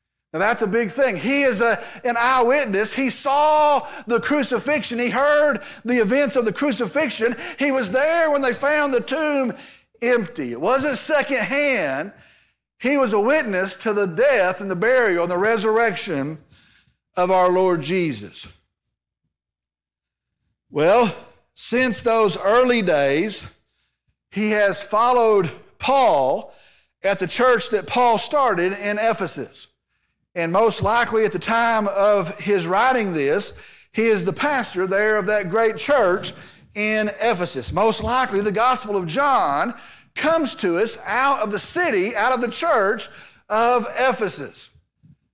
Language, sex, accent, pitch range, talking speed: English, male, American, 200-265 Hz, 140 wpm